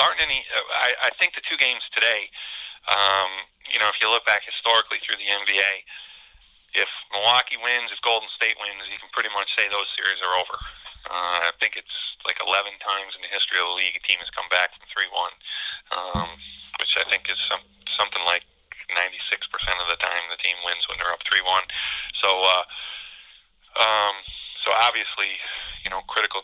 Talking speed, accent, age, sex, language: 190 wpm, American, 30-49, male, English